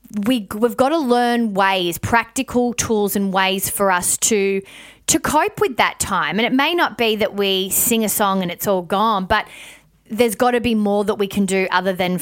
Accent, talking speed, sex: Australian, 210 wpm, female